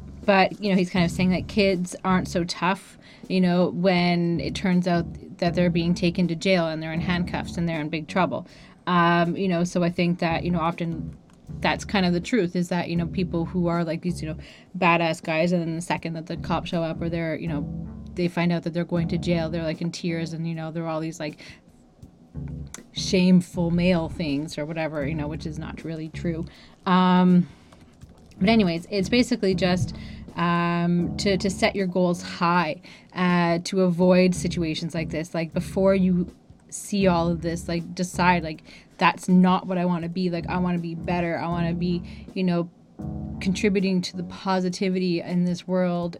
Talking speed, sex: 210 wpm, female